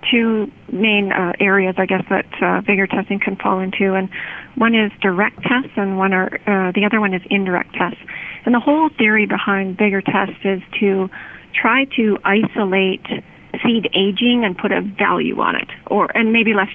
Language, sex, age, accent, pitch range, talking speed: English, female, 40-59, American, 190-225 Hz, 185 wpm